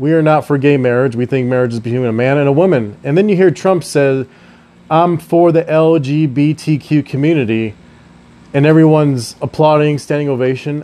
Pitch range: 125-165 Hz